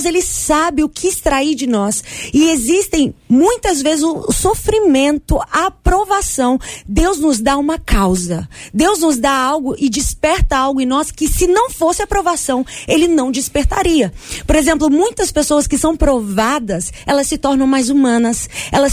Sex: female